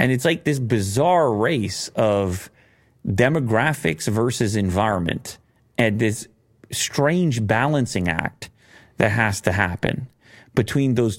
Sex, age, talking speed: male, 30-49, 115 wpm